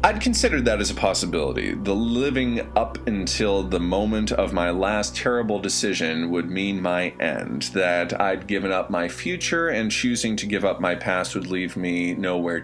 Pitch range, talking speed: 85-110 Hz, 180 wpm